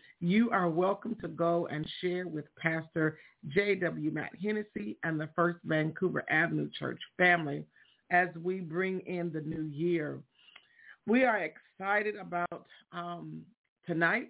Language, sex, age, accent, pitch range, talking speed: English, female, 50-69, American, 165-200 Hz, 135 wpm